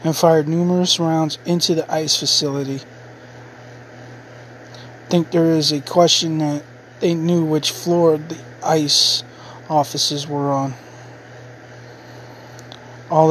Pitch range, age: 125-155 Hz, 20-39